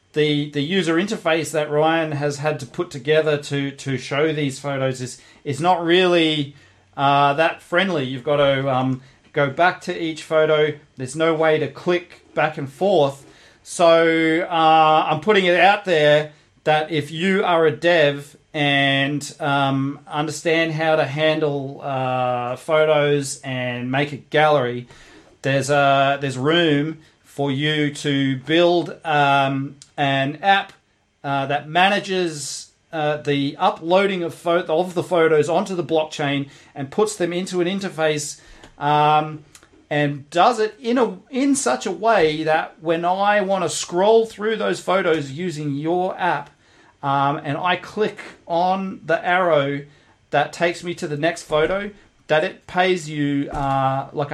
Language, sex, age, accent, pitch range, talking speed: English, male, 40-59, Australian, 140-175 Hz, 150 wpm